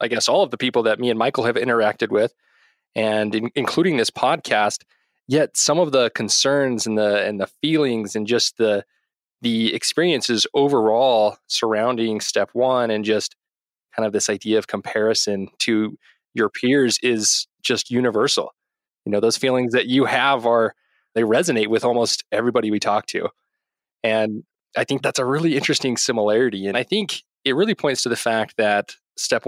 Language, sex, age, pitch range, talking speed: English, male, 20-39, 110-135 Hz, 175 wpm